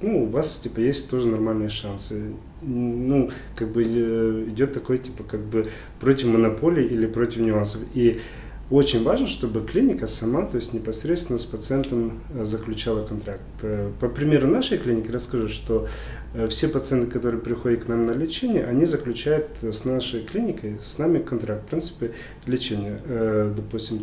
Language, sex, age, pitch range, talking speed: Russian, male, 30-49, 110-130 Hz, 150 wpm